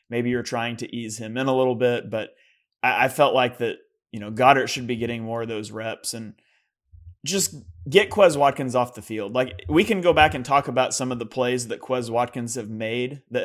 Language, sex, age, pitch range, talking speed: English, male, 30-49, 120-145 Hz, 230 wpm